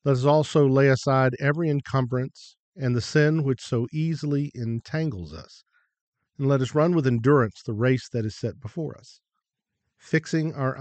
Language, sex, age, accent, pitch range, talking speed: English, male, 50-69, American, 115-145 Hz, 165 wpm